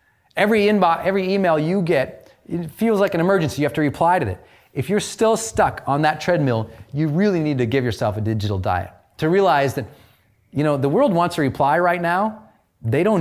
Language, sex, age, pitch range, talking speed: English, male, 30-49, 125-185 Hz, 215 wpm